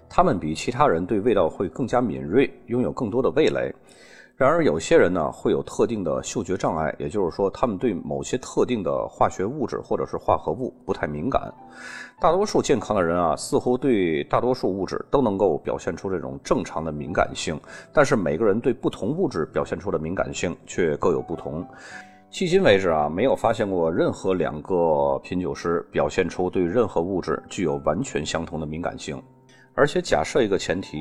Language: Chinese